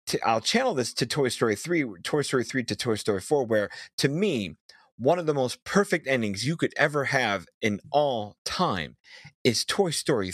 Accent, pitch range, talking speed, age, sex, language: American, 105-155 Hz, 190 wpm, 30-49, male, English